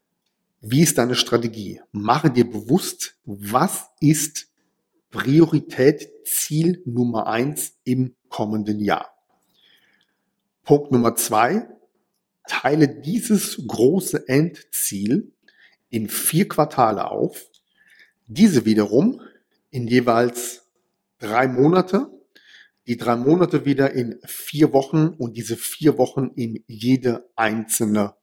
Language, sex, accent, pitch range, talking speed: German, male, German, 115-155 Hz, 100 wpm